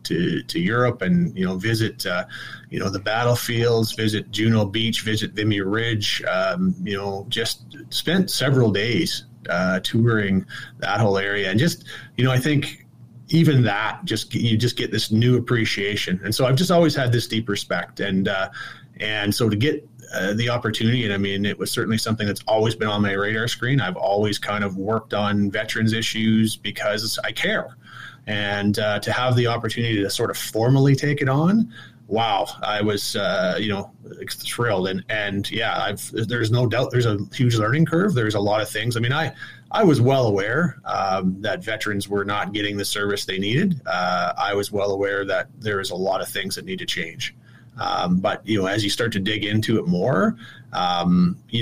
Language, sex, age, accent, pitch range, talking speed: English, male, 30-49, American, 105-125 Hz, 200 wpm